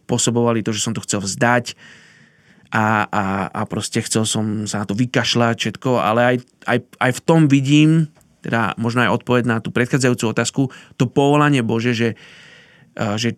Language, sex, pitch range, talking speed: Slovak, male, 120-135 Hz, 170 wpm